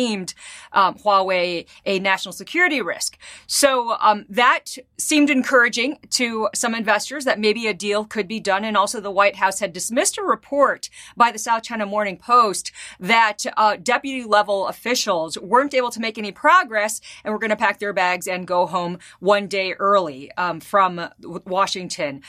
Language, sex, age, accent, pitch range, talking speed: English, female, 40-59, American, 190-230 Hz, 165 wpm